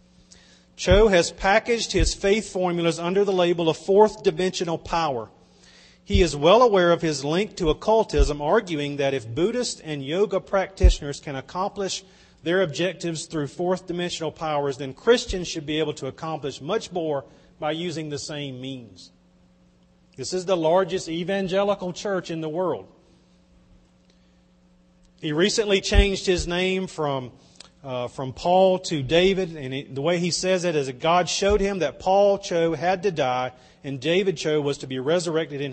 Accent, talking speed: American, 160 wpm